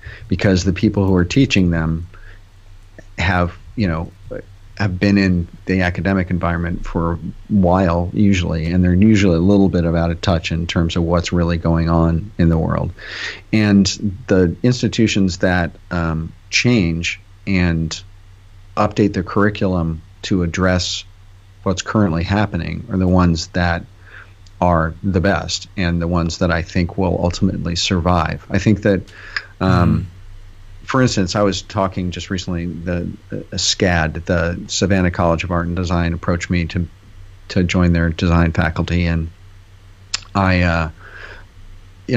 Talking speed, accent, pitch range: 150 wpm, American, 85-100 Hz